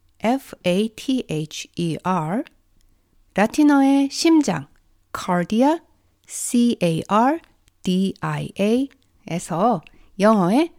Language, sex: Korean, female